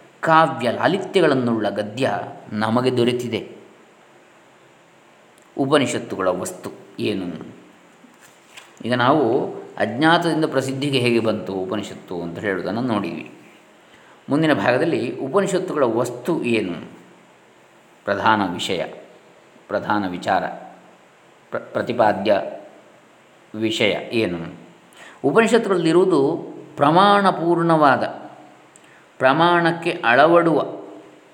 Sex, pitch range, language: male, 110-160 Hz, Kannada